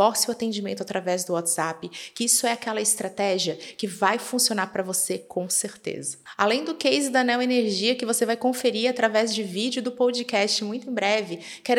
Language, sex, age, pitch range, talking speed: Portuguese, female, 30-49, 195-250 Hz, 185 wpm